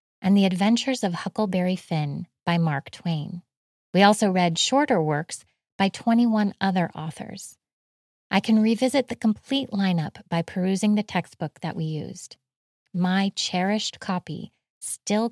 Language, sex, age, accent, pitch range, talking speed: English, female, 30-49, American, 175-215 Hz, 135 wpm